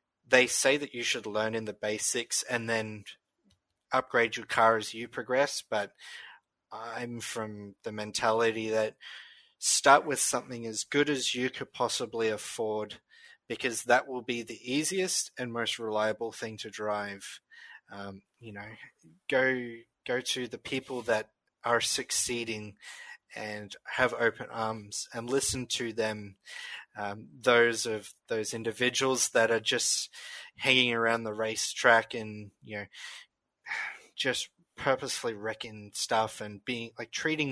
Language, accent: English, Australian